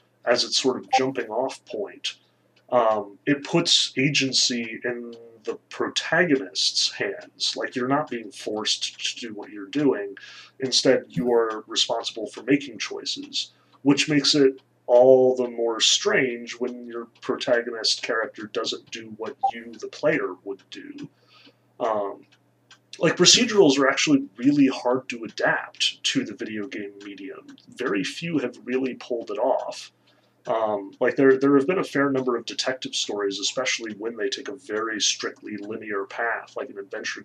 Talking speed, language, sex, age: 155 wpm, English, male, 30-49